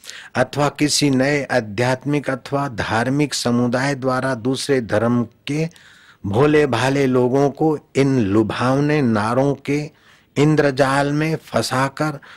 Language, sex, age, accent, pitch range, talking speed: Hindi, male, 50-69, native, 105-135 Hz, 105 wpm